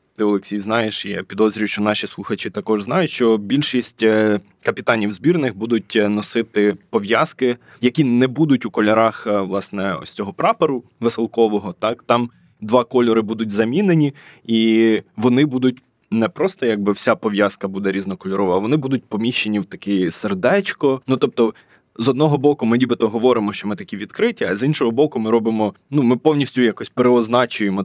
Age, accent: 20-39, native